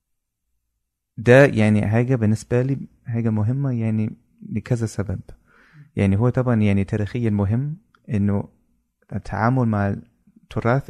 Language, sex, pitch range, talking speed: Arabic, male, 100-120 Hz, 110 wpm